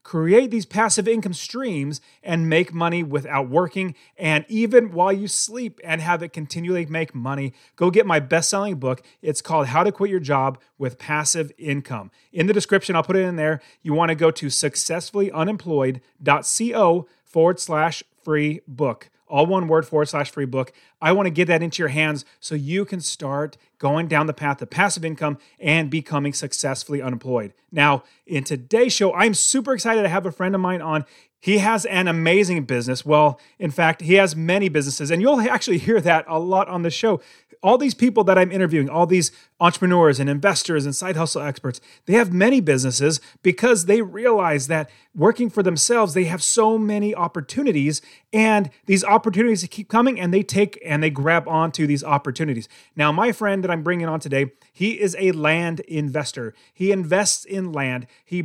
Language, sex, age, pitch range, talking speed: English, male, 30-49, 150-200 Hz, 185 wpm